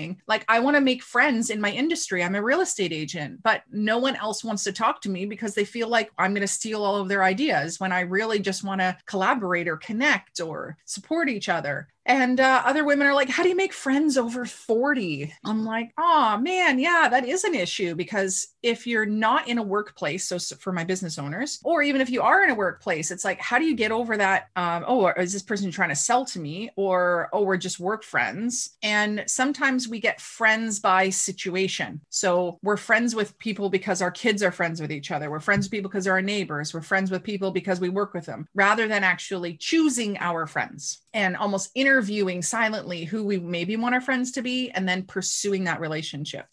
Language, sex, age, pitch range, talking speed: English, female, 30-49, 185-240 Hz, 225 wpm